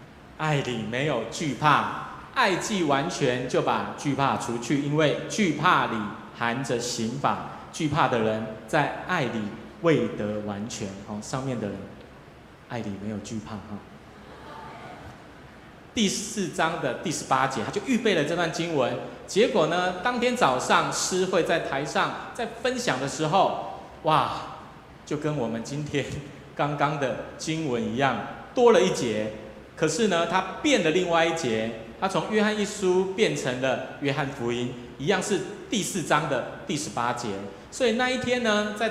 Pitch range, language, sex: 120-180 Hz, Chinese, male